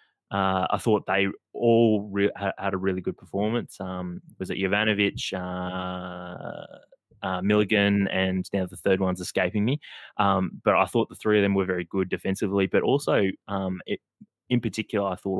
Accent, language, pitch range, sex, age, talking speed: Australian, English, 90-100 Hz, male, 20-39, 175 wpm